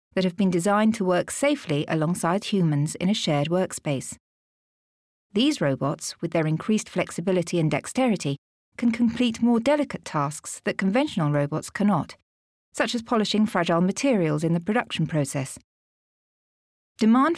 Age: 40-59